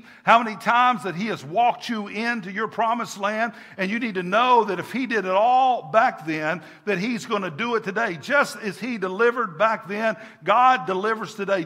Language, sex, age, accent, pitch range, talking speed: English, male, 50-69, American, 210-265 Hz, 210 wpm